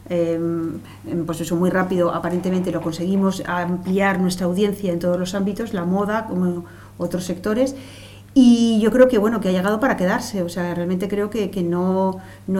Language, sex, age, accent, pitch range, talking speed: Spanish, female, 40-59, Spanish, 180-200 Hz, 180 wpm